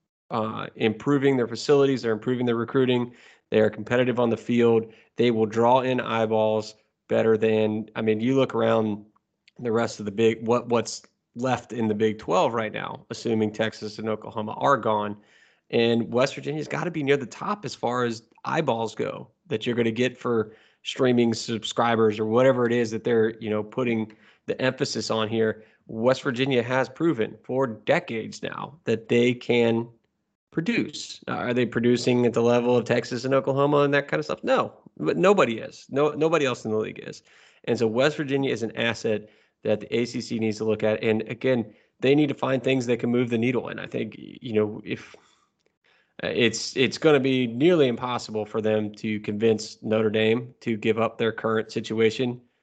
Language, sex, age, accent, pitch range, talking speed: English, male, 20-39, American, 110-125 Hz, 195 wpm